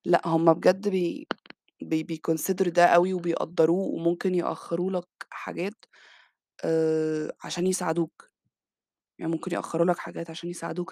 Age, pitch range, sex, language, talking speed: 20-39, 165-185 Hz, female, Arabic, 125 wpm